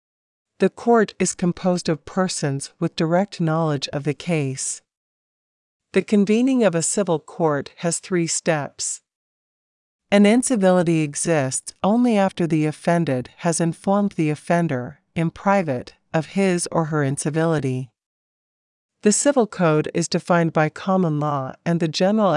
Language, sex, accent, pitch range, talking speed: English, female, American, 150-185 Hz, 135 wpm